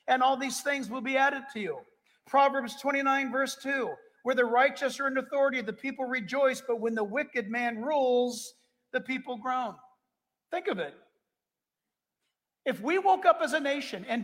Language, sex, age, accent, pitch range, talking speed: English, male, 50-69, American, 220-275 Hz, 175 wpm